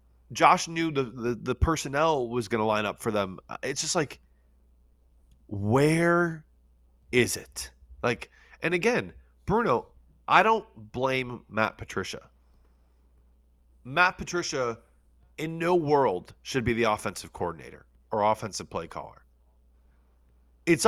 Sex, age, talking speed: male, 30-49, 125 wpm